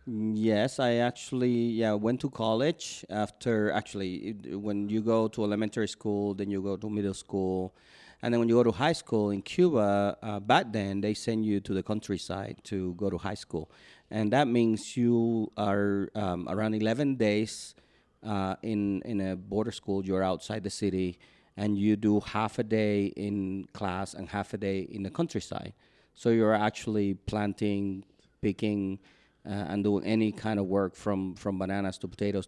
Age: 40-59